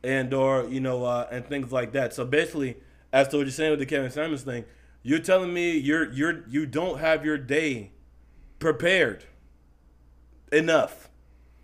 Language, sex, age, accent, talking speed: English, male, 20-39, American, 170 wpm